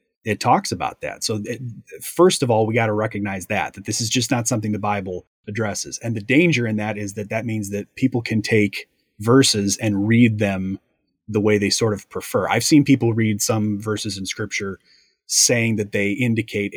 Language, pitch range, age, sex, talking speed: English, 105-125 Hz, 30-49, male, 205 wpm